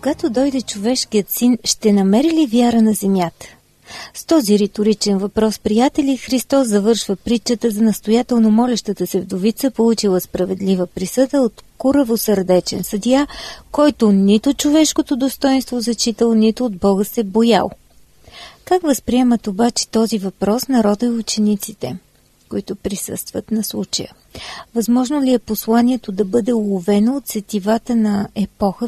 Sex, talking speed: female, 130 wpm